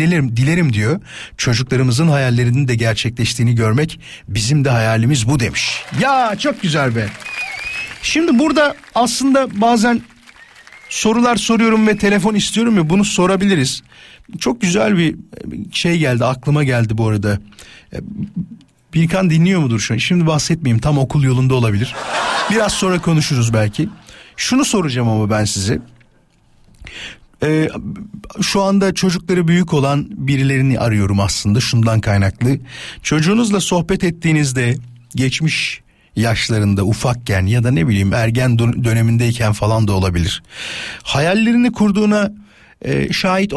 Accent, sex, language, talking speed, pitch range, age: native, male, Turkish, 120 wpm, 120-195 Hz, 50-69